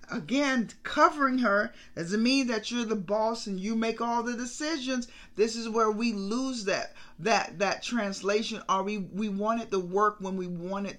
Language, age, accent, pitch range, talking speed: English, 40-59, American, 190-230 Hz, 190 wpm